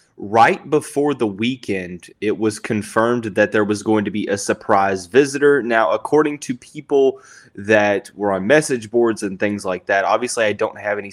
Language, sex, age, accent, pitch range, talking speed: English, male, 20-39, American, 100-115 Hz, 185 wpm